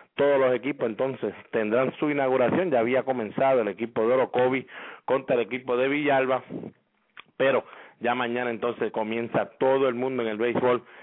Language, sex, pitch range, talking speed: English, male, 120-140 Hz, 165 wpm